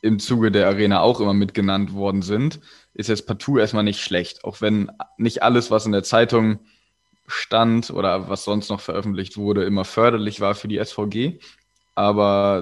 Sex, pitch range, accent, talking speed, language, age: male, 100-110 Hz, German, 175 wpm, German, 20-39